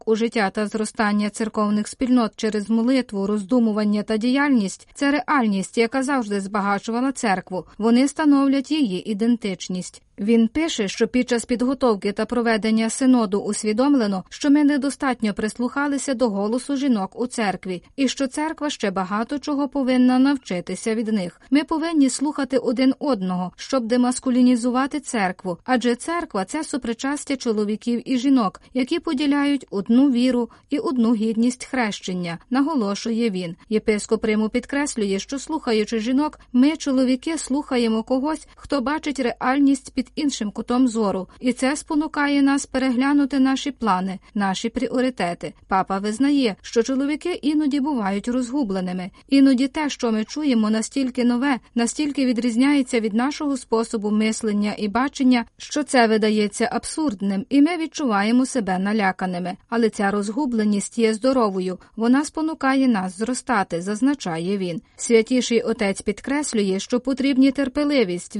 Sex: female